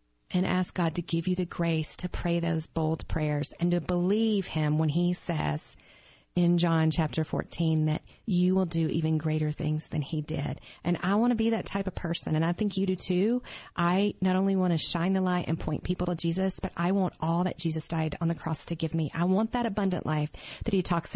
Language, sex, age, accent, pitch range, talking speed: English, female, 40-59, American, 160-185 Hz, 235 wpm